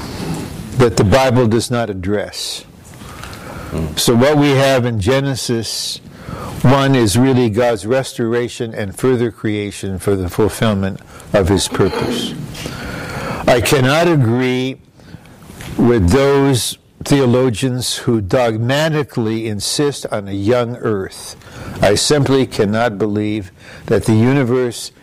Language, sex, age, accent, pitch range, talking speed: English, male, 60-79, American, 105-130 Hz, 110 wpm